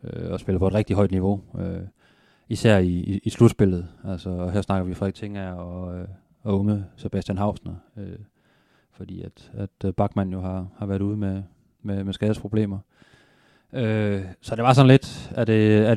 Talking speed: 185 wpm